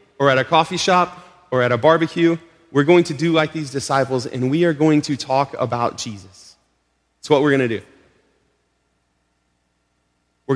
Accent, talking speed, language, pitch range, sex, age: American, 175 wpm, English, 110-155 Hz, male, 30-49